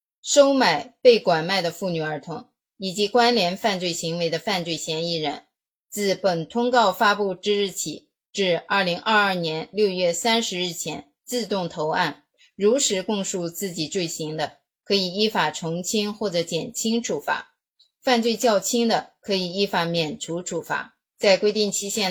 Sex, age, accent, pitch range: female, 20-39, native, 175-225 Hz